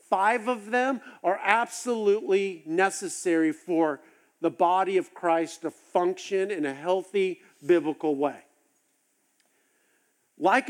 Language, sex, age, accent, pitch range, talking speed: English, male, 50-69, American, 165-255 Hz, 105 wpm